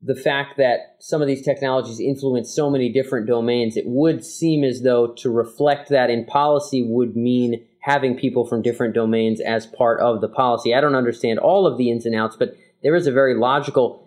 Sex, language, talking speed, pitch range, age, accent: male, English, 210 wpm, 120-155 Hz, 30-49, American